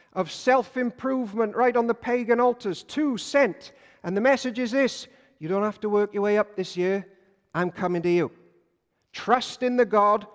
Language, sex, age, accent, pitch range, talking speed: English, male, 50-69, British, 185-250 Hz, 185 wpm